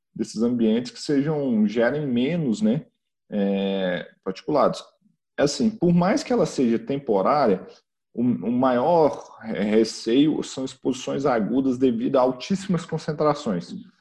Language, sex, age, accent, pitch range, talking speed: Portuguese, male, 40-59, Brazilian, 125-175 Hz, 115 wpm